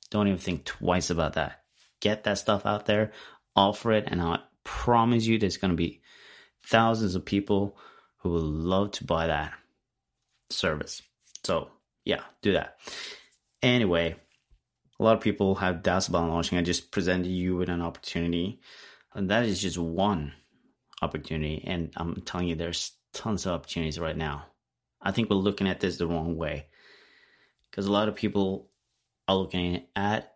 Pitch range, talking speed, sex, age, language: 85-105 Hz, 165 wpm, male, 30-49, English